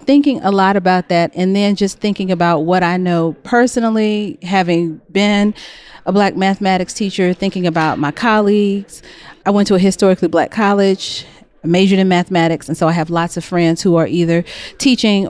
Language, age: English, 40-59